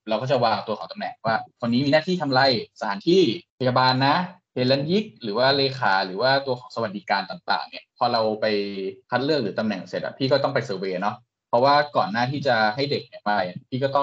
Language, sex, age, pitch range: Thai, male, 20-39, 110-135 Hz